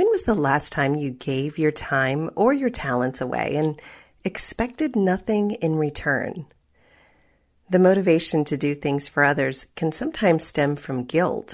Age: 30-49